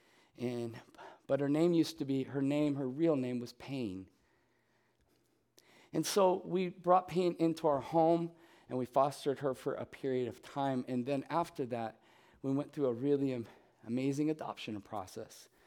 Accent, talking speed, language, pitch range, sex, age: American, 170 wpm, English, 120-155 Hz, male, 50-69